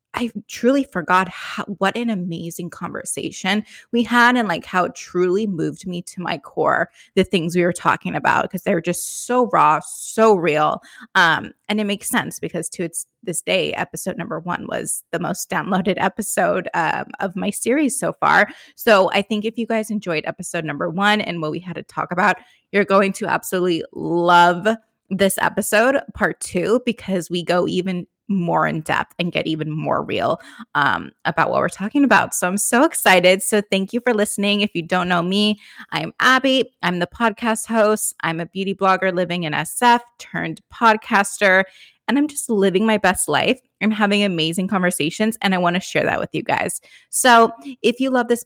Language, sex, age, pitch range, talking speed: English, female, 20-39, 180-220 Hz, 195 wpm